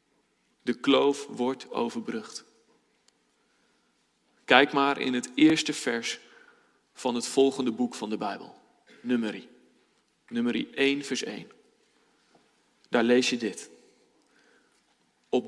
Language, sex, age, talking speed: Dutch, male, 40-59, 100 wpm